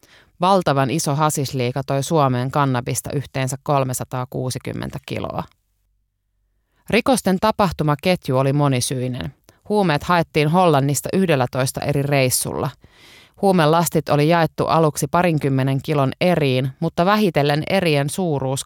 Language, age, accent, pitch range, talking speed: Finnish, 30-49, native, 130-170 Hz, 100 wpm